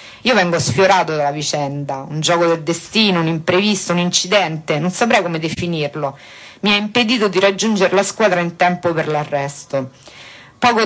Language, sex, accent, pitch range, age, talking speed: Italian, female, native, 160-195 Hz, 50-69, 160 wpm